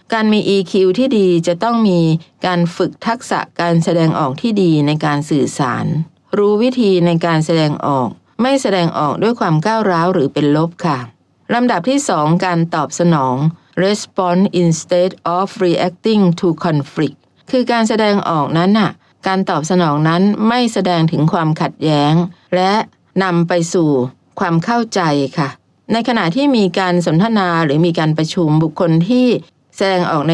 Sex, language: female, English